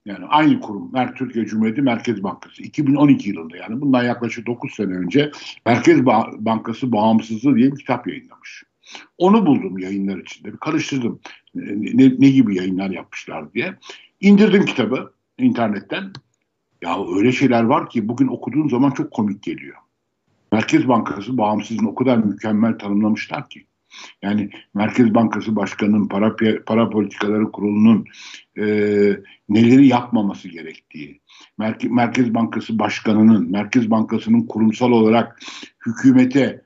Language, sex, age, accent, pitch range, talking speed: Turkish, male, 60-79, native, 110-150 Hz, 130 wpm